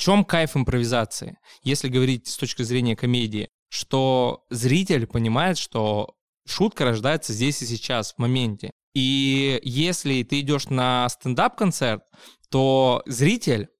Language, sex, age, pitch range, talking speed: Russian, male, 20-39, 115-150 Hz, 125 wpm